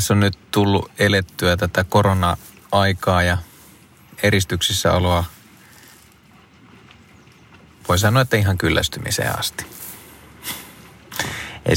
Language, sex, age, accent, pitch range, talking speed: Finnish, male, 30-49, native, 85-100 Hz, 85 wpm